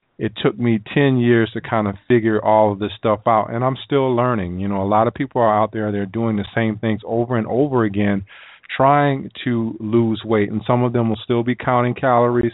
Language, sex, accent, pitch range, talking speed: English, male, American, 105-120 Hz, 235 wpm